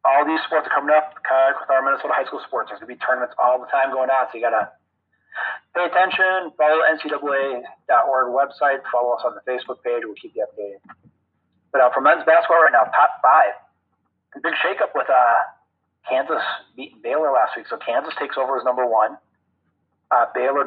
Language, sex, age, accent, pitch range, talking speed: English, male, 30-49, American, 120-150 Hz, 205 wpm